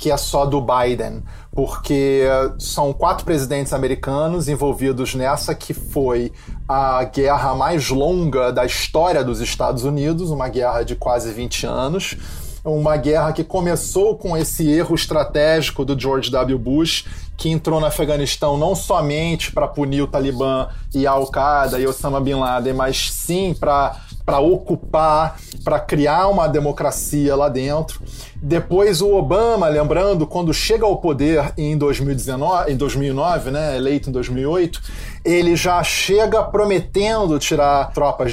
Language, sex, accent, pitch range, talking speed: Portuguese, male, Brazilian, 135-165 Hz, 140 wpm